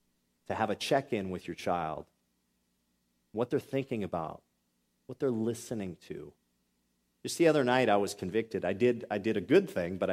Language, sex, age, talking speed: English, male, 40-59, 170 wpm